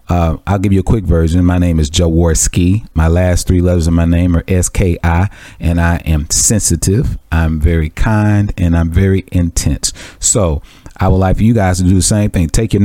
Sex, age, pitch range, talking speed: male, 40-59, 85-100 Hz, 205 wpm